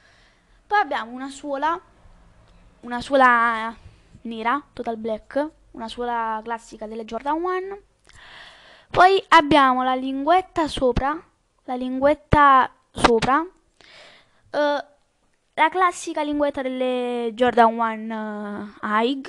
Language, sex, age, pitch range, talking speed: Italian, female, 10-29, 235-300 Hz, 90 wpm